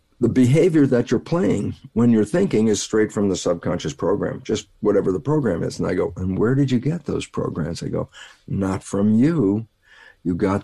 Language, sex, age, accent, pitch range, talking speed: English, male, 50-69, American, 95-145 Hz, 205 wpm